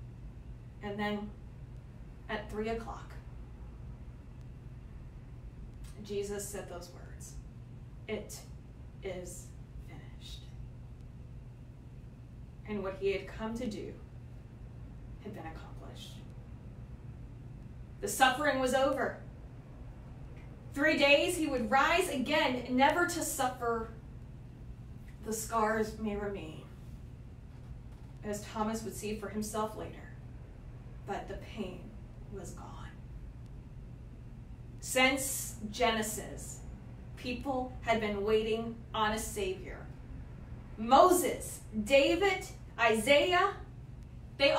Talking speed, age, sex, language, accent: 85 wpm, 30-49, female, English, American